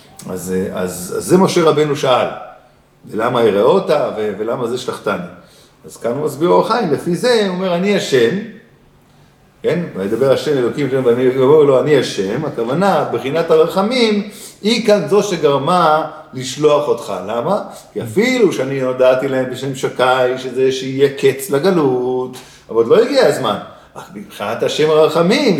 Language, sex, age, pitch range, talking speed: Hebrew, male, 50-69, 135-210 Hz, 150 wpm